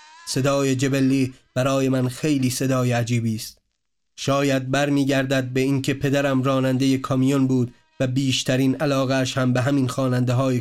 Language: Persian